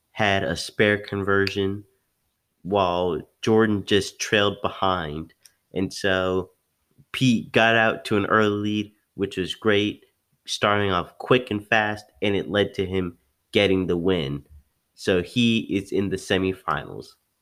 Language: English